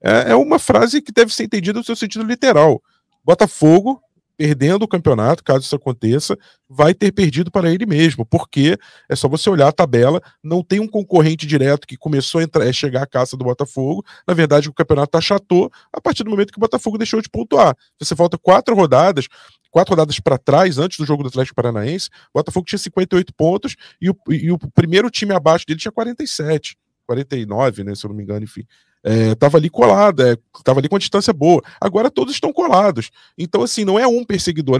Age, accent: 20-39, Brazilian